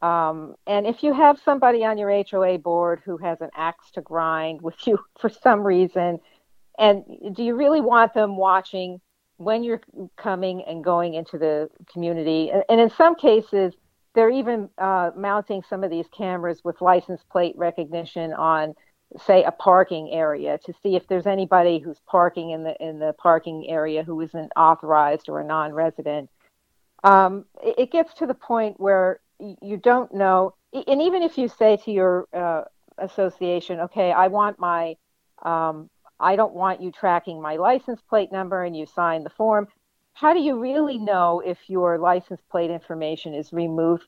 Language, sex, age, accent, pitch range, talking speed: English, female, 50-69, American, 165-210 Hz, 175 wpm